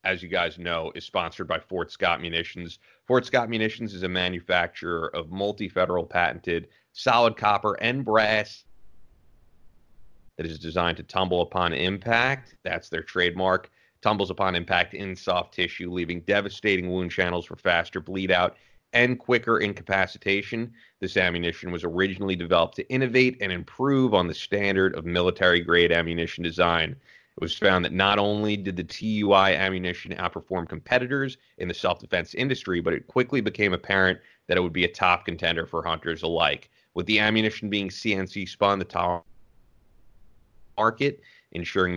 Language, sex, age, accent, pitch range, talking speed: English, male, 30-49, American, 90-110 Hz, 155 wpm